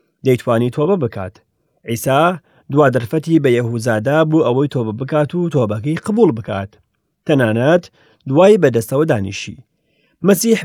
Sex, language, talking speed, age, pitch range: male, English, 120 wpm, 40-59, 115-170 Hz